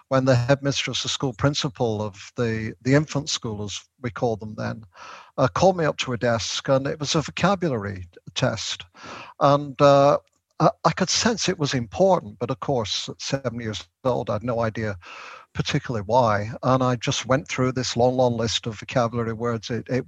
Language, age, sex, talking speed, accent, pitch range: English, 50-69, male, 195 wpm, British, 115-145 Hz